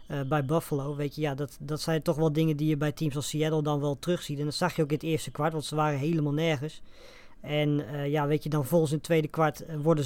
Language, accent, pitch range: Dutch, Dutch, 145-165 Hz